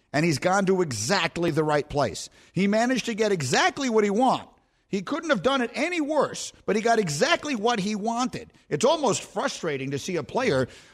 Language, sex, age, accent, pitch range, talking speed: English, male, 50-69, American, 140-200 Hz, 205 wpm